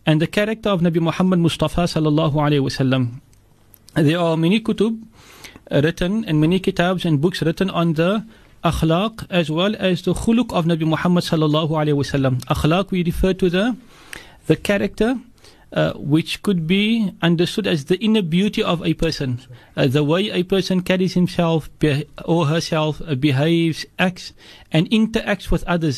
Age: 40-59